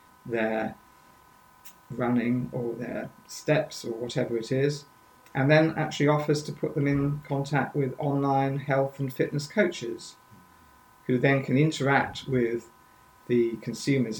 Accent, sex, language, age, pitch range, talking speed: British, male, English, 50-69, 120-150 Hz, 130 wpm